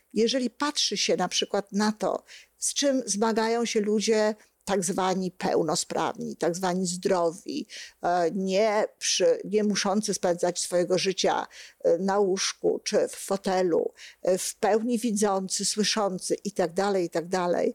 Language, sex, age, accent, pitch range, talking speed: Polish, female, 50-69, native, 190-245 Hz, 120 wpm